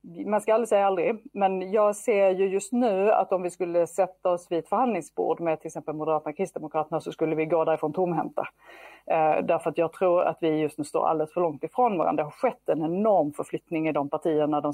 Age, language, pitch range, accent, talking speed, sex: 40-59, English, 155-190 Hz, Swedish, 230 wpm, female